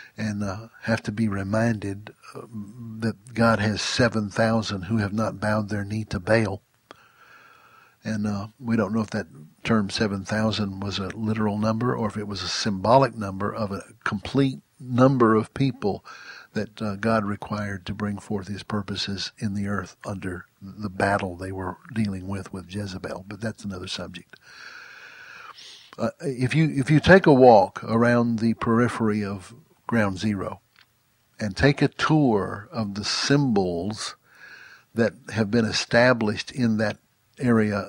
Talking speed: 160 wpm